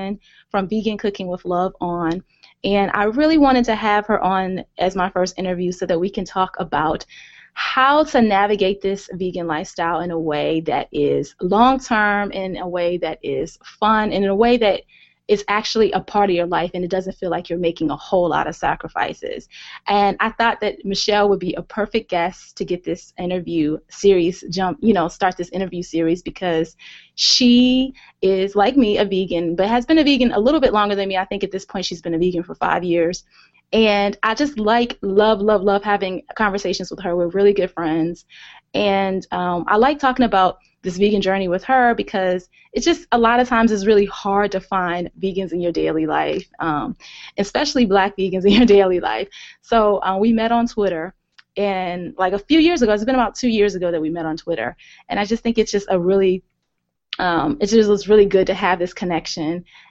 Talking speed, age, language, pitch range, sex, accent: 210 wpm, 20-39, English, 180-215 Hz, female, American